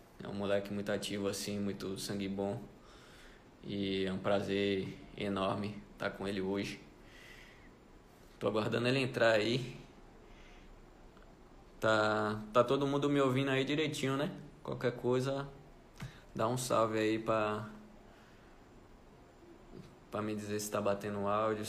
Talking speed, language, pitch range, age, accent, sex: 130 wpm, Portuguese, 100-115 Hz, 20-39, Brazilian, male